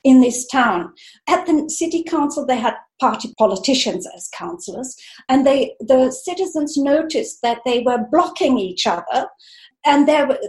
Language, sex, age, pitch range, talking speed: English, female, 50-69, 225-290 Hz, 150 wpm